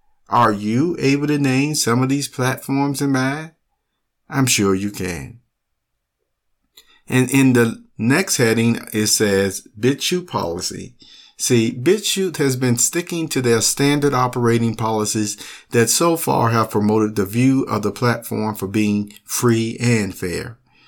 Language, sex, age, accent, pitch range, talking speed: English, male, 50-69, American, 105-140 Hz, 140 wpm